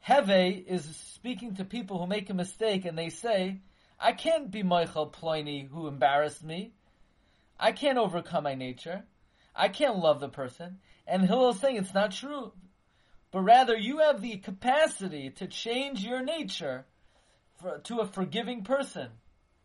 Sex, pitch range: male, 180-235 Hz